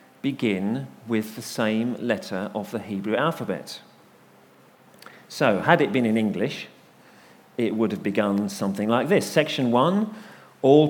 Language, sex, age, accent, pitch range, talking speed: English, male, 40-59, British, 120-160 Hz, 140 wpm